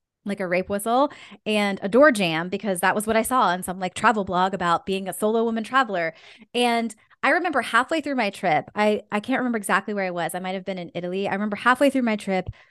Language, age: English, 20-39